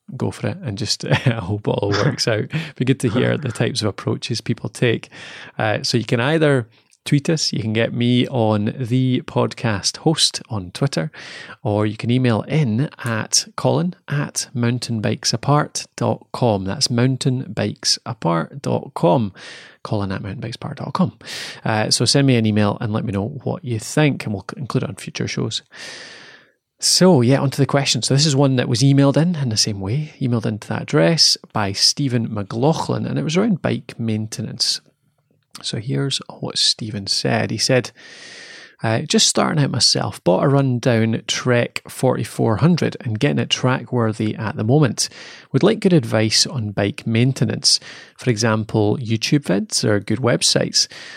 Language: English